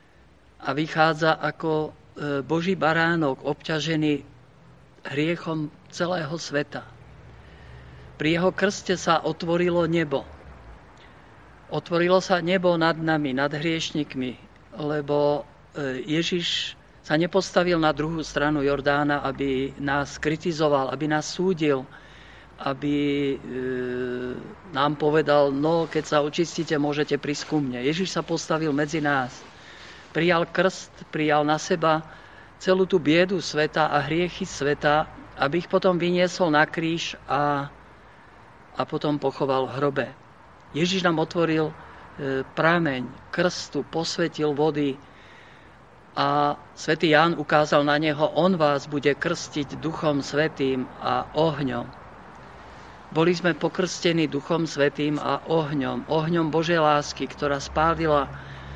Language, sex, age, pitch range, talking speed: Slovak, male, 50-69, 140-165 Hz, 110 wpm